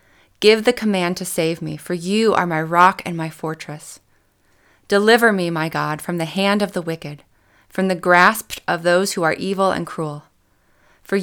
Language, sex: English, female